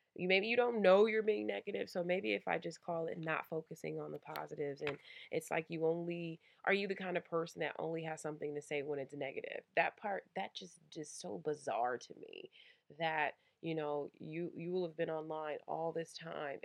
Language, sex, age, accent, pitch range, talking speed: English, female, 20-39, American, 150-175 Hz, 220 wpm